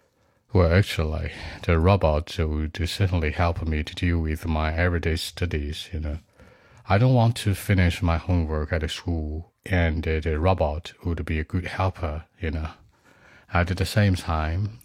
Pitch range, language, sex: 80-95 Hz, Chinese, male